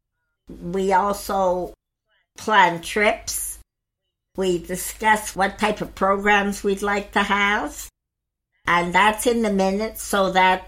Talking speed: 120 wpm